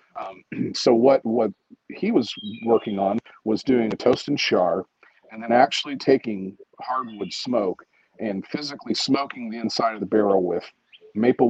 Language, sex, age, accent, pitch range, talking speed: English, male, 40-59, American, 110-125 Hz, 155 wpm